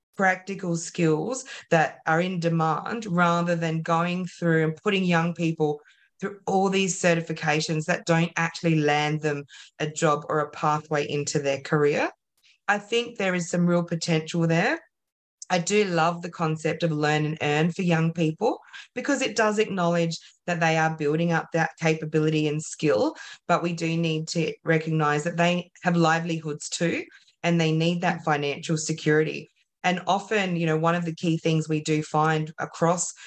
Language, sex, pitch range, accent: English, female, 155-180 Hz, Australian